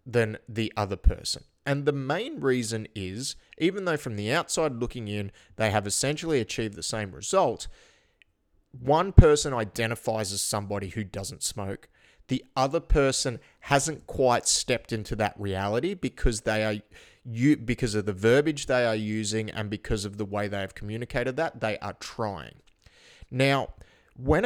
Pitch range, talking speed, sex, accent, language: 105-130 Hz, 155 wpm, male, Australian, English